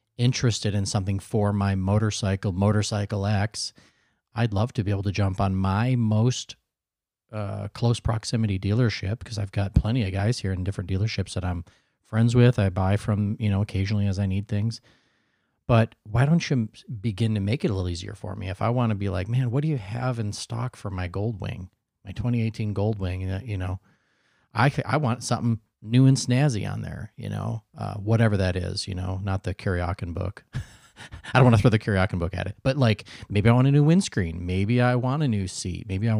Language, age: English, 40-59